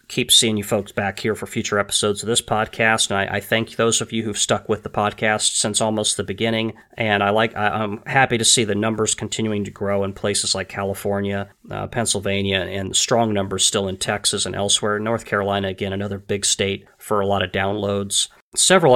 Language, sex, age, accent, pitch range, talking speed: English, male, 30-49, American, 100-115 Hz, 210 wpm